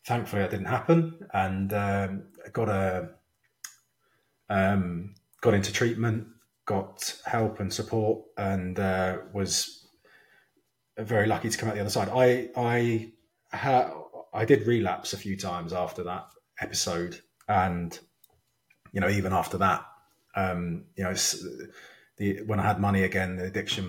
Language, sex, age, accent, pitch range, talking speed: English, male, 30-49, British, 95-110 Hz, 140 wpm